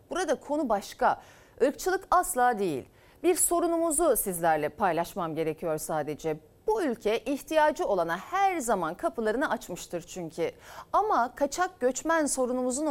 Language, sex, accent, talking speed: Turkish, female, native, 115 wpm